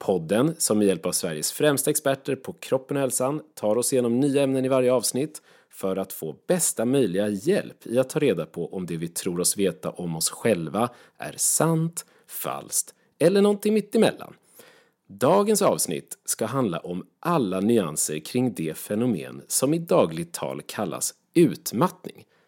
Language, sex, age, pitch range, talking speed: Swedish, male, 30-49, 95-150 Hz, 170 wpm